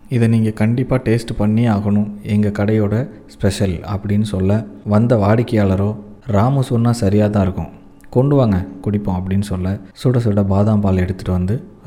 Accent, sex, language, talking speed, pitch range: native, male, Tamil, 145 wpm, 95-115 Hz